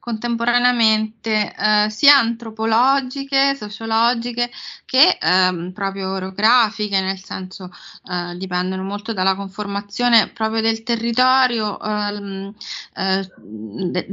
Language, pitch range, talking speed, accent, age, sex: Italian, 190-225 Hz, 95 wpm, native, 20-39, female